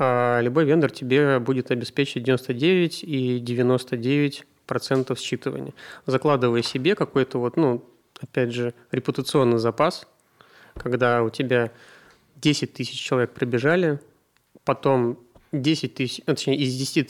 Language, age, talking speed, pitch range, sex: Russian, 30-49, 110 wpm, 120-135 Hz, male